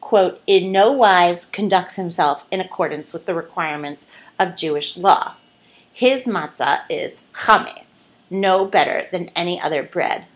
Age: 30-49